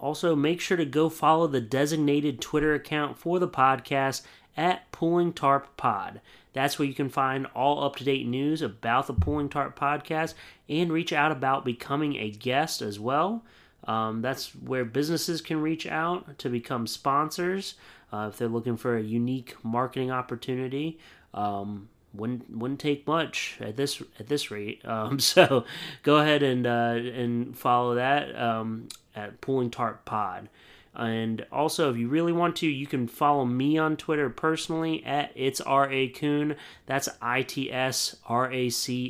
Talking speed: 165 wpm